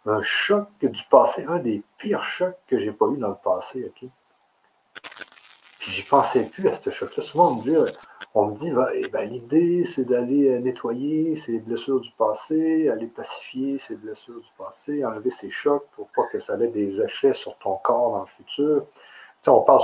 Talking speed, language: 200 wpm, French